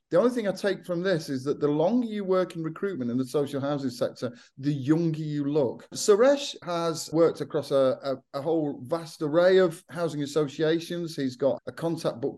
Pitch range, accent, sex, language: 120-155 Hz, British, male, English